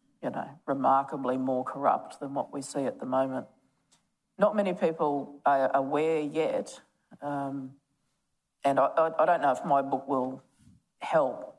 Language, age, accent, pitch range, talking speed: English, 40-59, Australian, 135-165 Hz, 150 wpm